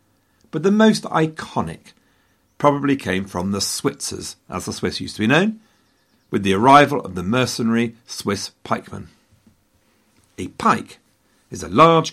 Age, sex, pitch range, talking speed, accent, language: 50-69, male, 95-150 Hz, 145 wpm, British, English